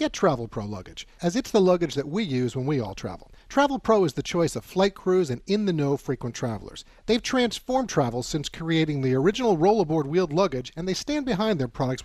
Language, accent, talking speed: English, American, 215 wpm